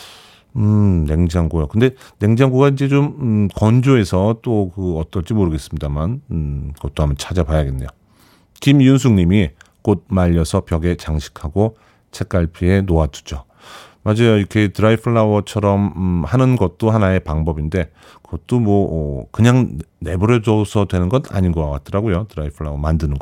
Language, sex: Korean, male